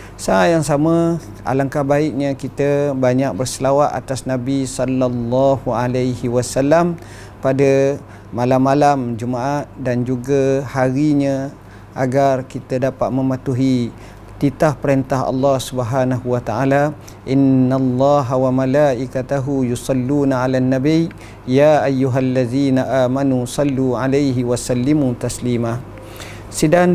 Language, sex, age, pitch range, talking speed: Malay, male, 50-69, 120-140 Hz, 95 wpm